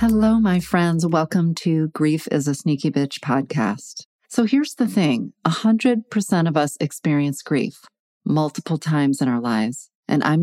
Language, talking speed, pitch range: English, 160 wpm, 140-170 Hz